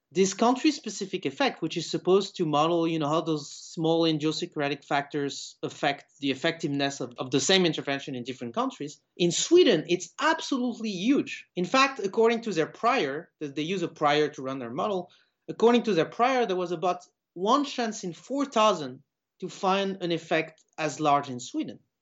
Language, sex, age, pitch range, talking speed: English, male, 30-49, 155-210 Hz, 175 wpm